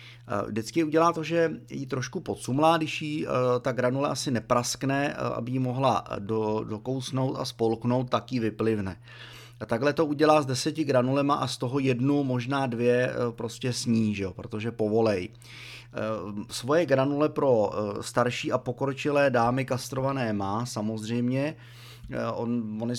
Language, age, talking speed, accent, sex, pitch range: Czech, 30-49, 130 wpm, native, male, 115-135 Hz